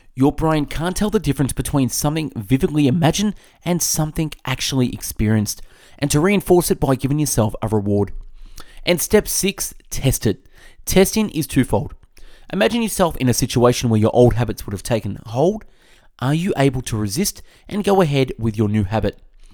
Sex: male